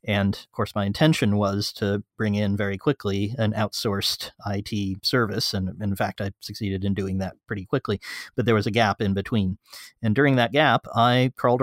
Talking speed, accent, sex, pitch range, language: 195 wpm, American, male, 105-125 Hz, English